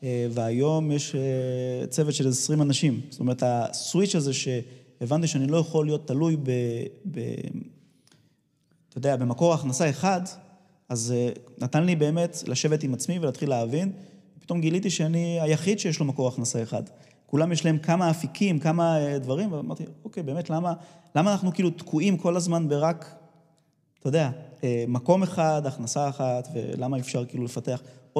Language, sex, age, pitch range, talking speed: Hebrew, male, 20-39, 130-160 Hz, 150 wpm